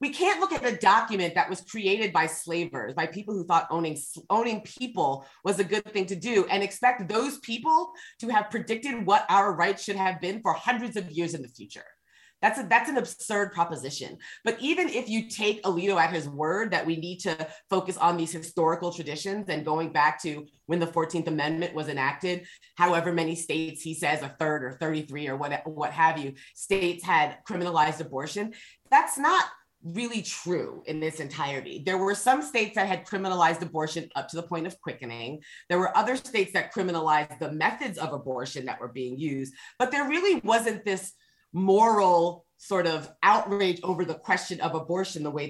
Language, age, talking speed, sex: English, 30-49, 195 wpm, female